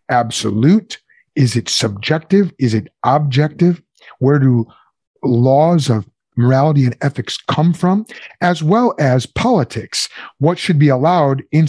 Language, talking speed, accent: English, 130 wpm, American